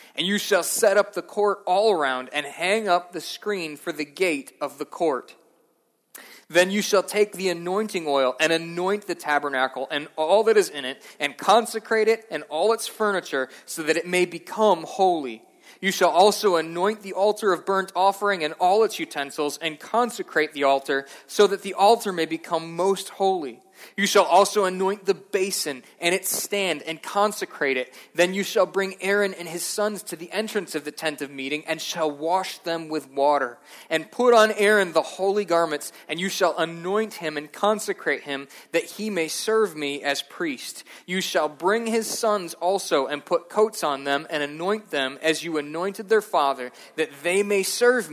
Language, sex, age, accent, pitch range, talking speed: English, male, 20-39, American, 155-205 Hz, 190 wpm